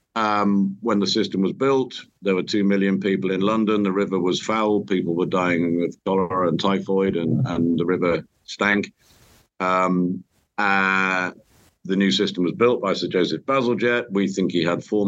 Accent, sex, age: British, male, 50-69